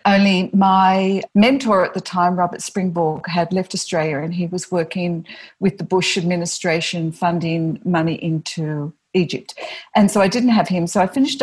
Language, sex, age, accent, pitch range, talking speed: English, female, 50-69, Australian, 170-205 Hz, 170 wpm